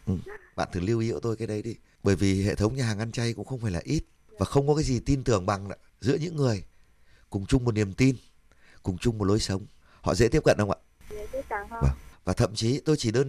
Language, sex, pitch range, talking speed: Vietnamese, male, 95-140 Hz, 255 wpm